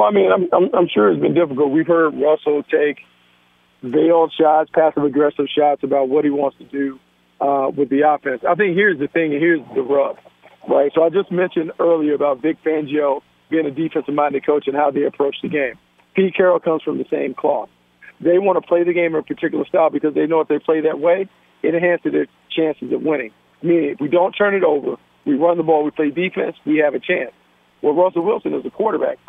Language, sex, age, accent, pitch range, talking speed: English, male, 50-69, American, 145-170 Hz, 225 wpm